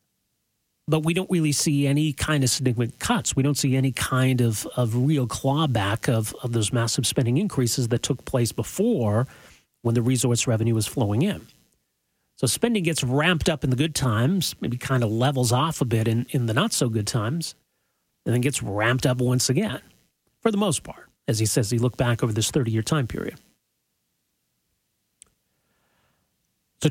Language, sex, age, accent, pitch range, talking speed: English, male, 40-59, American, 115-150 Hz, 180 wpm